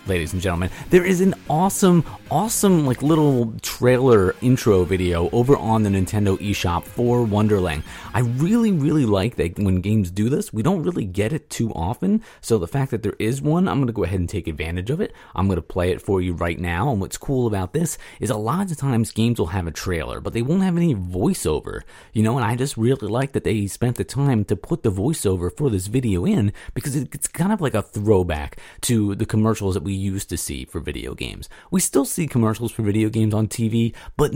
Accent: American